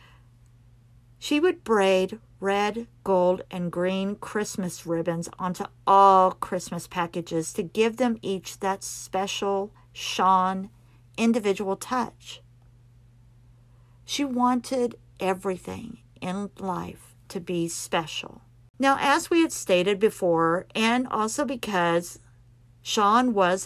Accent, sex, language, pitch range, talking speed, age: American, female, English, 165-220 Hz, 105 wpm, 50-69